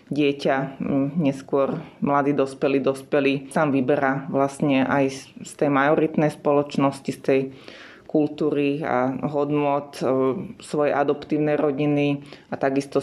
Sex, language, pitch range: female, Slovak, 135-145 Hz